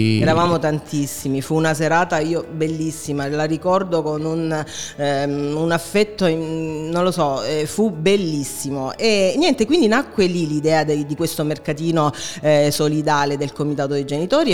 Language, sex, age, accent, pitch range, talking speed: Italian, female, 30-49, native, 145-180 Hz, 155 wpm